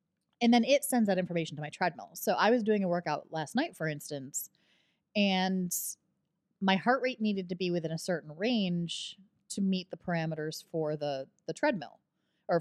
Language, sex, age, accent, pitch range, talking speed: English, female, 30-49, American, 155-190 Hz, 185 wpm